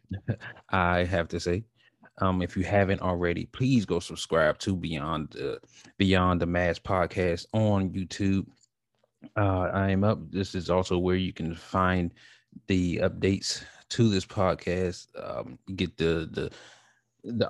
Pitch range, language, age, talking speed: 90-100 Hz, English, 20-39, 140 wpm